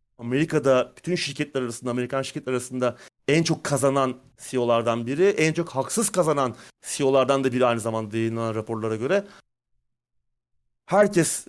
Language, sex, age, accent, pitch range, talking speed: Turkish, male, 40-59, native, 120-155 Hz, 130 wpm